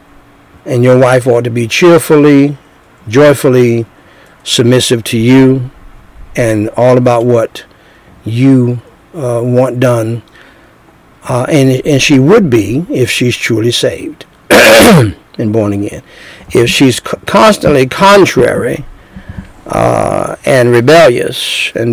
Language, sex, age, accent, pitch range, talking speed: English, male, 60-79, American, 115-135 Hz, 110 wpm